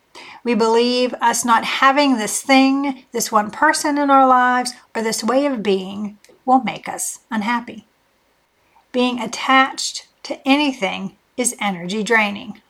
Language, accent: English, American